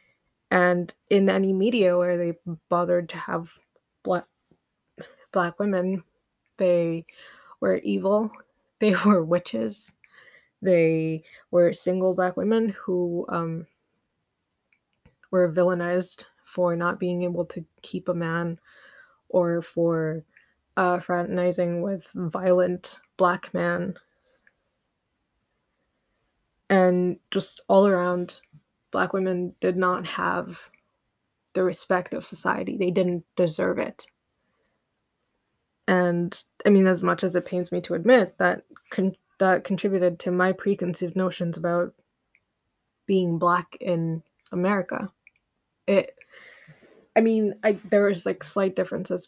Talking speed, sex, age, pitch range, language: 115 wpm, female, 20-39, 175-195 Hz, English